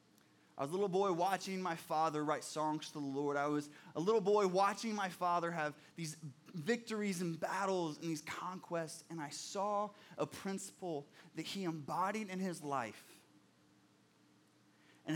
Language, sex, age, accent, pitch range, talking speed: English, male, 20-39, American, 150-205 Hz, 160 wpm